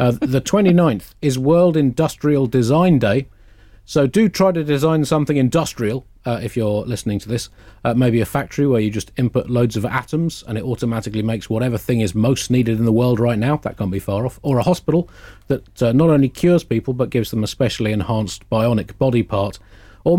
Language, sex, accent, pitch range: English, male, British, 110-150 Hz